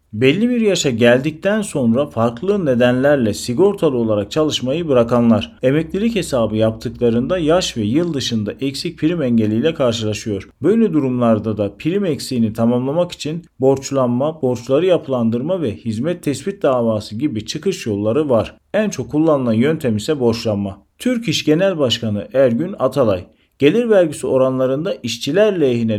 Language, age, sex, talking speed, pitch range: Turkish, 40-59, male, 130 wpm, 115-155 Hz